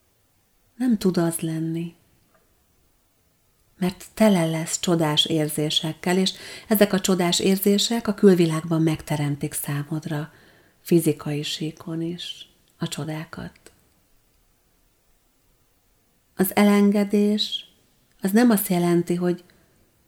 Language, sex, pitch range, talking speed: Hungarian, female, 160-190 Hz, 90 wpm